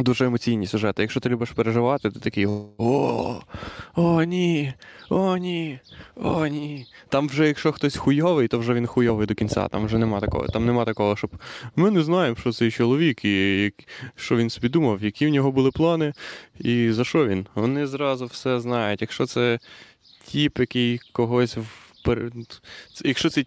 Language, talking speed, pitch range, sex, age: Ukrainian, 175 wpm, 105-135 Hz, male, 20-39